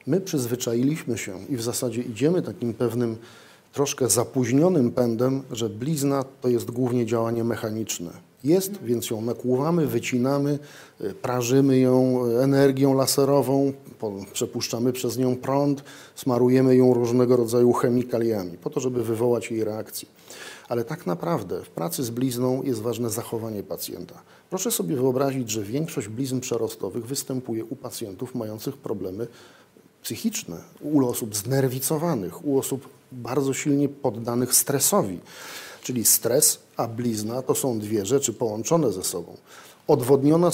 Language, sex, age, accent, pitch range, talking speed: Polish, male, 40-59, native, 120-140 Hz, 130 wpm